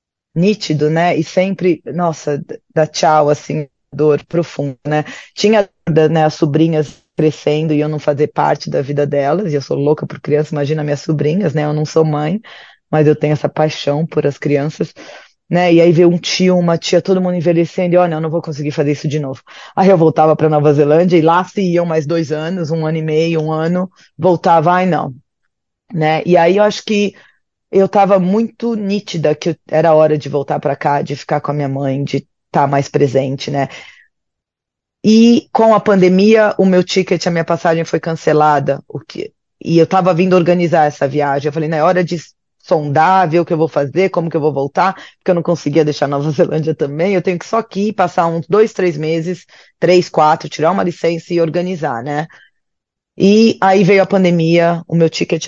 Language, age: Portuguese, 20-39